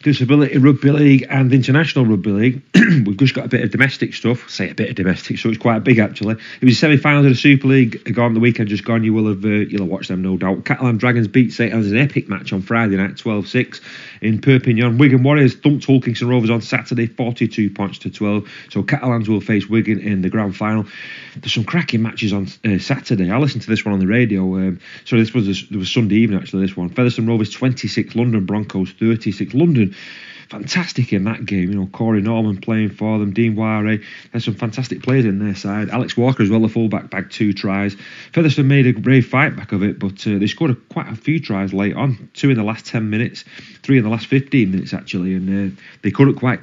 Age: 30-49